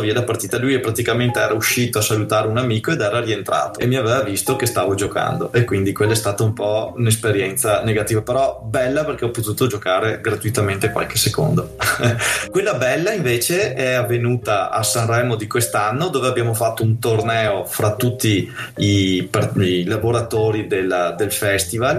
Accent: native